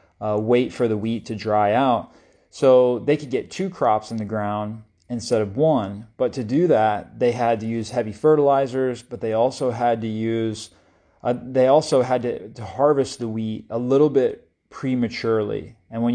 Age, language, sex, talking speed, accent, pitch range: 30-49, English, male, 190 wpm, American, 110-130 Hz